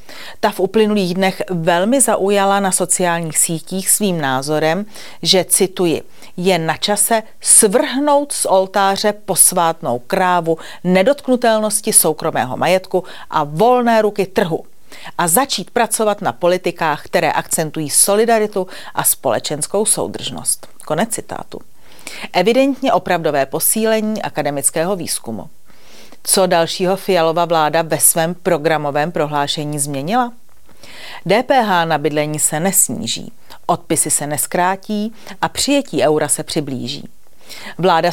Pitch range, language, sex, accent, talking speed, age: 165-205 Hz, Czech, female, native, 110 wpm, 40-59